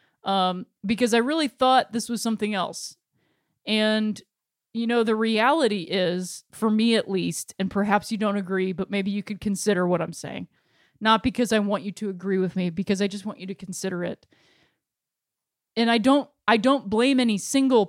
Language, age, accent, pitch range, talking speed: English, 20-39, American, 195-240 Hz, 190 wpm